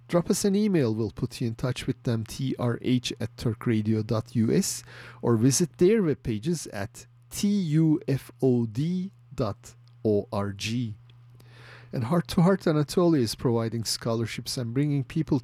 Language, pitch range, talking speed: English, 120-135 Hz, 120 wpm